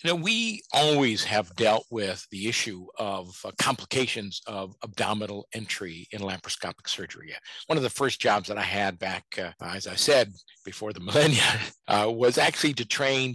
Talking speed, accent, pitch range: 175 wpm, American, 100-130 Hz